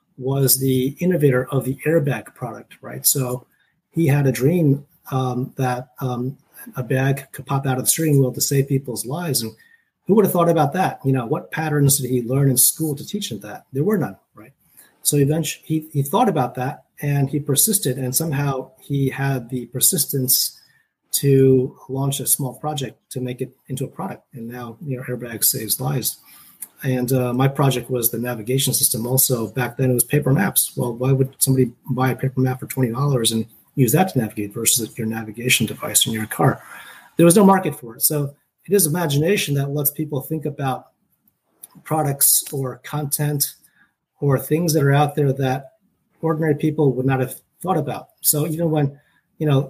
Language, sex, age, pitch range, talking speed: English, male, 30-49, 130-150 Hz, 195 wpm